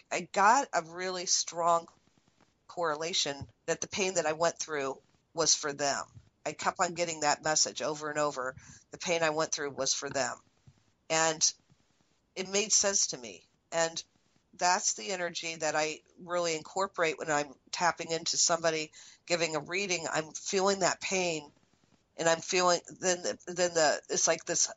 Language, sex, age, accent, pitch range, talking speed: English, female, 50-69, American, 150-175 Hz, 165 wpm